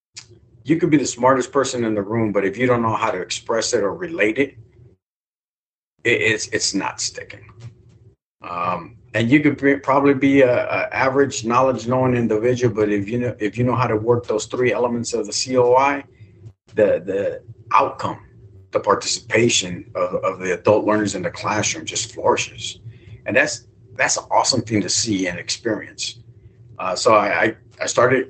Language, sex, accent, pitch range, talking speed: English, male, American, 105-120 Hz, 180 wpm